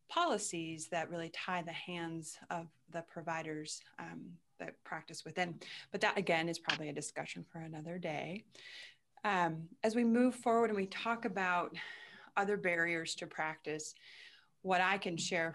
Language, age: English, 30-49